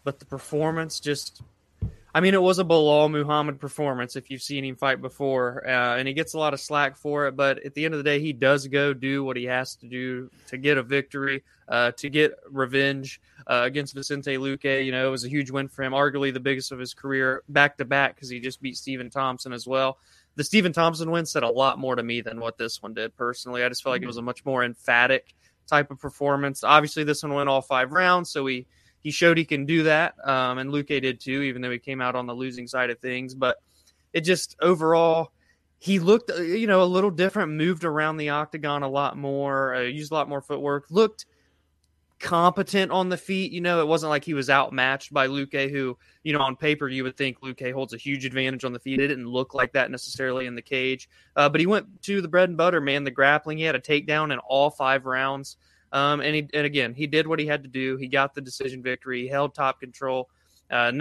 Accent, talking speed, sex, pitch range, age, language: American, 245 wpm, male, 130-150 Hz, 20-39, English